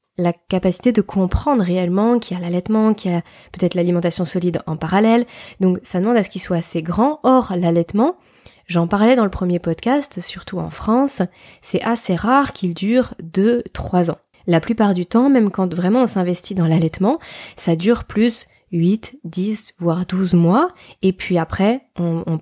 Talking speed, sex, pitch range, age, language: 180 wpm, female, 180-235 Hz, 20-39, French